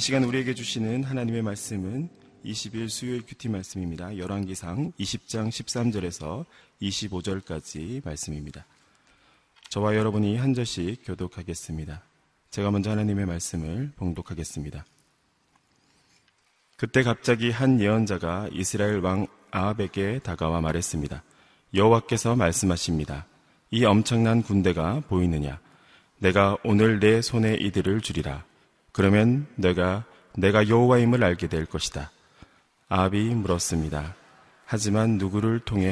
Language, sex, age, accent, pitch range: Korean, male, 30-49, native, 85-110 Hz